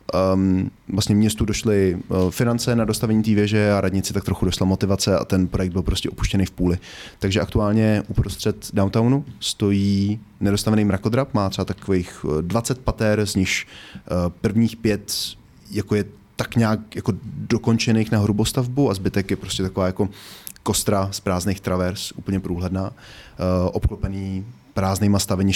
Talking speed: 150 wpm